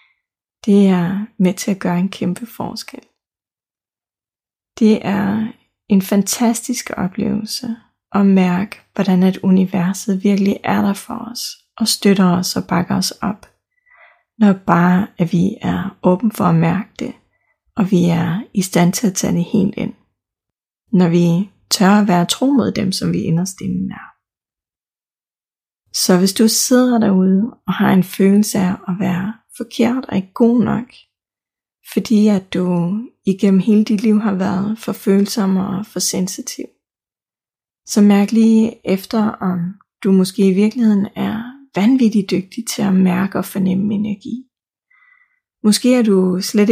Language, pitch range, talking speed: Danish, 190-225 Hz, 150 wpm